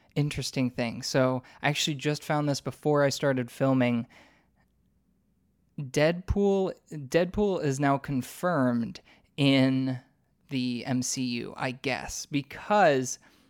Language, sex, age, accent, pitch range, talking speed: English, male, 20-39, American, 130-150 Hz, 100 wpm